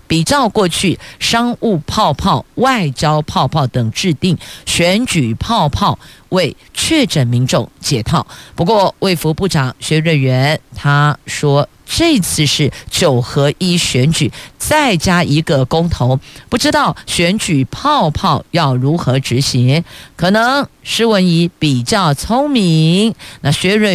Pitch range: 135-180 Hz